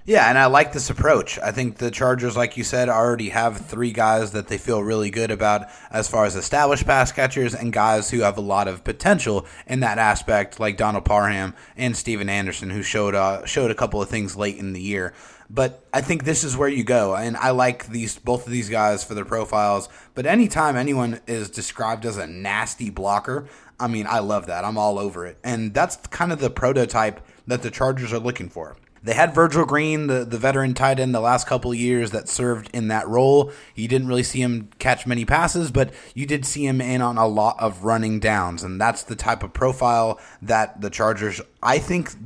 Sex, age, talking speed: male, 20-39, 225 wpm